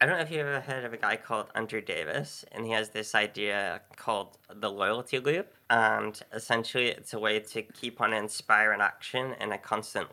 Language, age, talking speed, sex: English, 10-29, 205 wpm, male